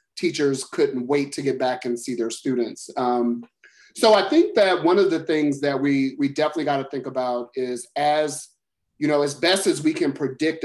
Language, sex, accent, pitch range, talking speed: English, male, American, 125-150 Hz, 210 wpm